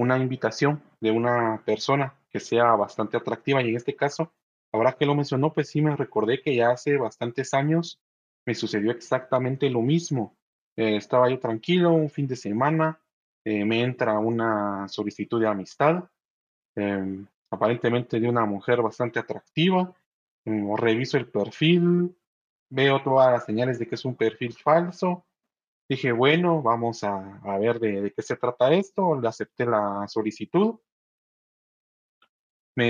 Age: 30-49